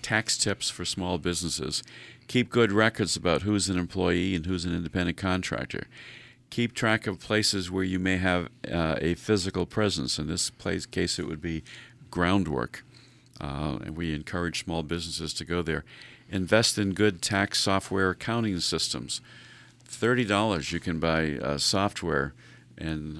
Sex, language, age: male, English, 50-69